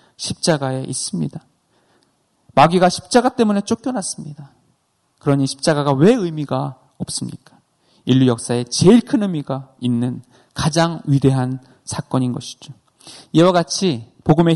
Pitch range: 130-180 Hz